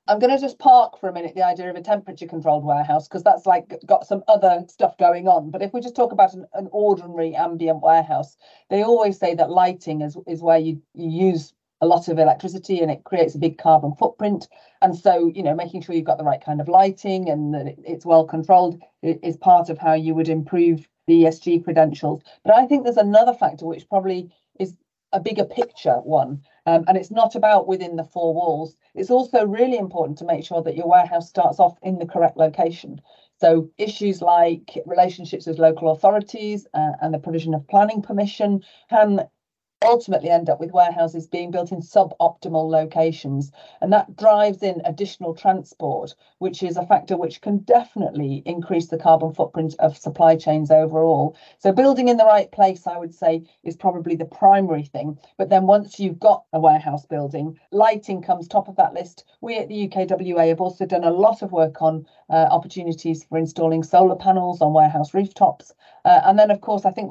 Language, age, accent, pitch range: English, 40-59, British, 160-200 Hz